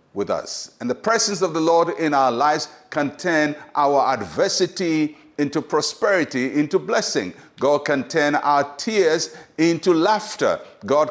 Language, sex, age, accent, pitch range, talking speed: English, male, 50-69, Nigerian, 150-205 Hz, 145 wpm